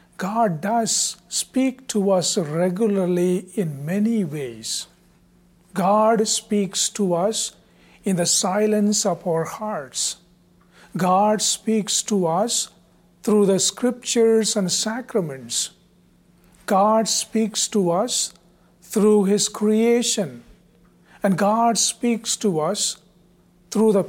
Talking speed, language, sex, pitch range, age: 105 wpm, English, male, 175-220 Hz, 50-69